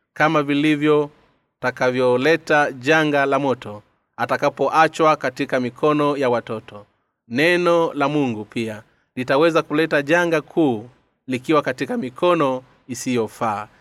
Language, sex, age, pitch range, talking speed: Swahili, male, 30-49, 125-155 Hz, 100 wpm